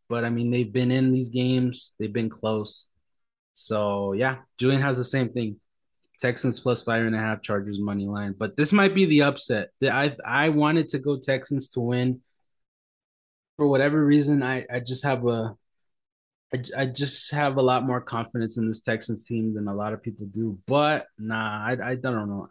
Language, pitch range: English, 110-135 Hz